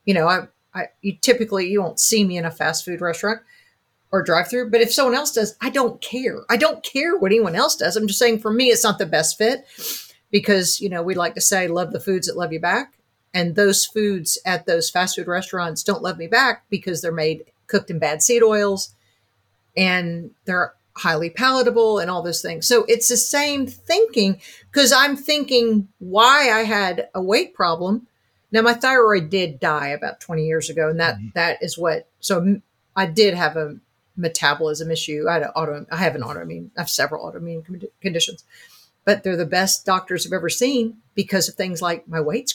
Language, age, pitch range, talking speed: English, 50-69, 175-230 Hz, 205 wpm